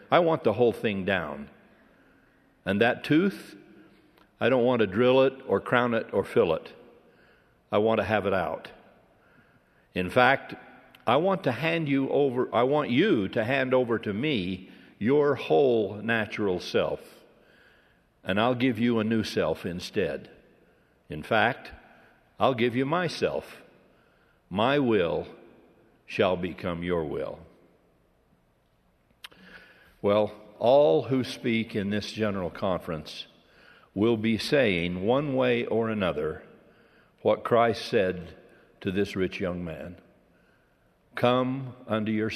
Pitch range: 105-135 Hz